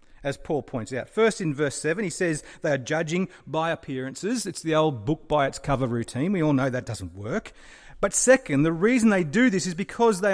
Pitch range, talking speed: 115-200 Hz, 225 wpm